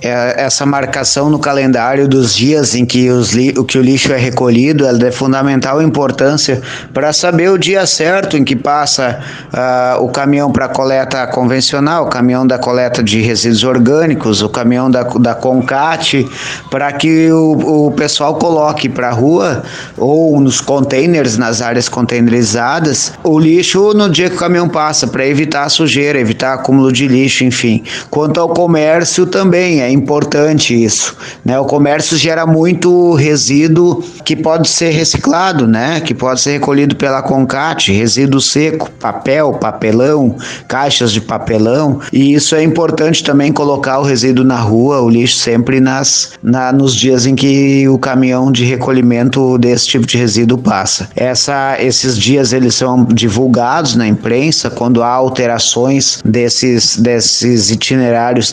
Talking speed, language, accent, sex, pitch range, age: 155 wpm, Portuguese, Brazilian, male, 125-150 Hz, 20-39